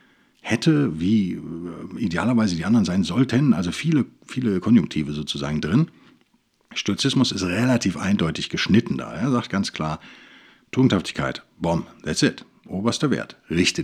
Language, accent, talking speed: German, German, 130 wpm